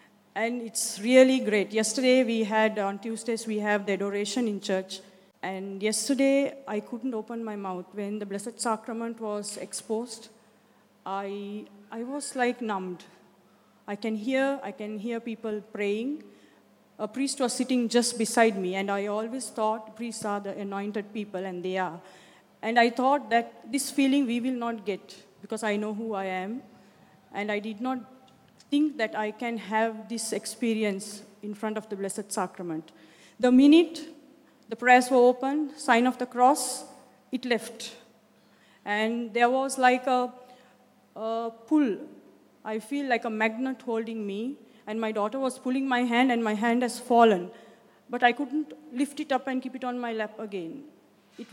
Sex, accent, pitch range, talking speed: female, Indian, 210-250 Hz, 170 wpm